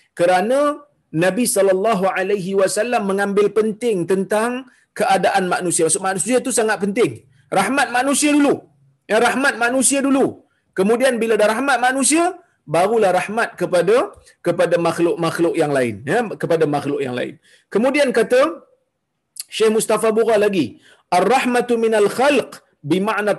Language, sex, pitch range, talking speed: Malayalam, male, 195-250 Hz, 130 wpm